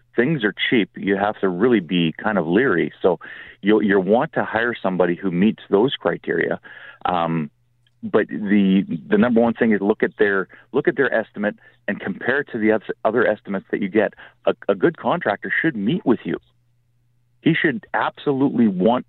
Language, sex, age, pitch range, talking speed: English, male, 40-59, 100-135 Hz, 180 wpm